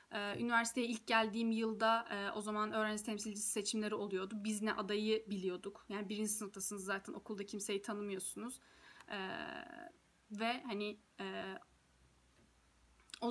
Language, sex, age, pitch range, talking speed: Turkish, female, 10-29, 200-225 Hz, 110 wpm